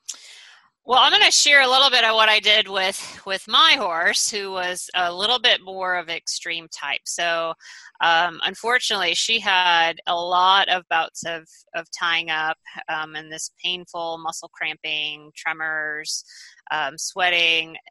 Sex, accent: female, American